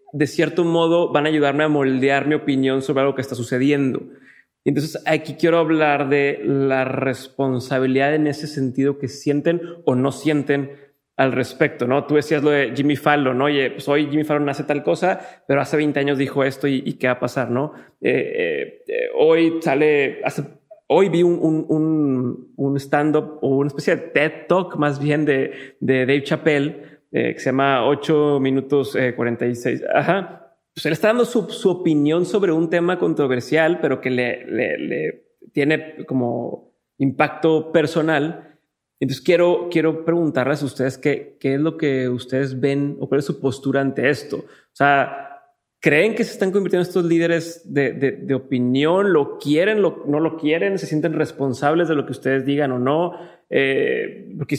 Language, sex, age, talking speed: Spanish, male, 30-49, 185 wpm